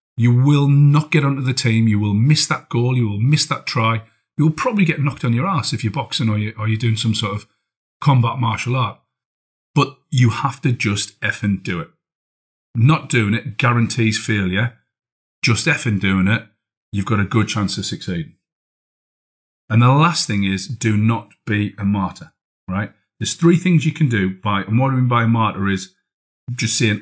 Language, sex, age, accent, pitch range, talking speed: English, male, 40-59, British, 105-130 Hz, 200 wpm